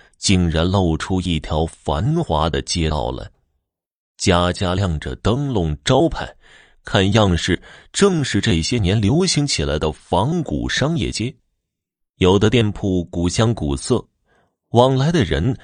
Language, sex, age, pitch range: Chinese, male, 30-49, 90-125 Hz